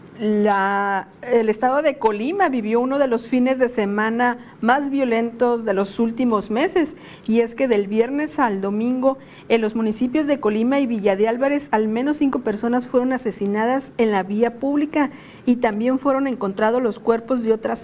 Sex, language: female, Spanish